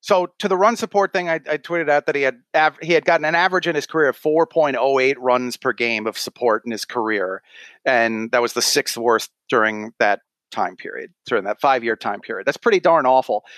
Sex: male